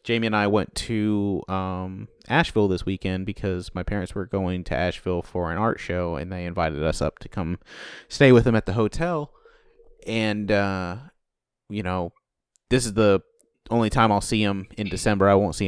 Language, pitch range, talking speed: English, 90-110 Hz, 190 wpm